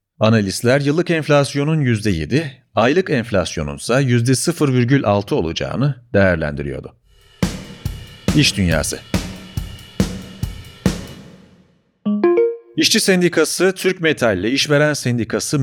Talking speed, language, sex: 75 wpm, Turkish, male